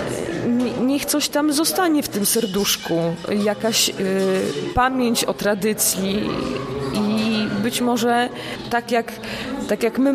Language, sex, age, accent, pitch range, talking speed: Polish, female, 20-39, native, 195-235 Hz, 110 wpm